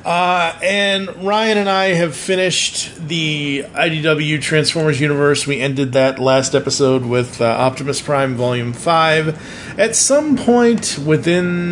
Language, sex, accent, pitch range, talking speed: English, male, American, 125-165 Hz, 135 wpm